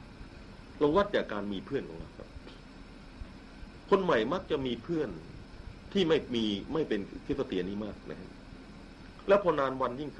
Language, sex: Thai, male